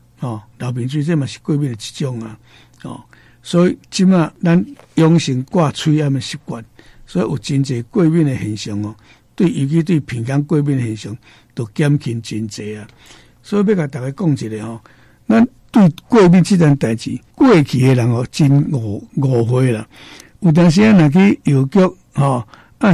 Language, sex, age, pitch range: Chinese, male, 60-79, 125-170 Hz